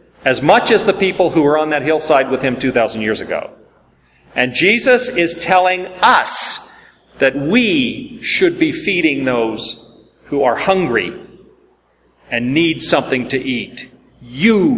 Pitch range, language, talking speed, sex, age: 150-195 Hz, English, 140 wpm, male, 40-59